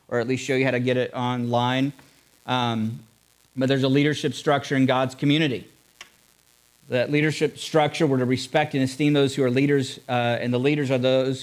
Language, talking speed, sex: English, 195 wpm, male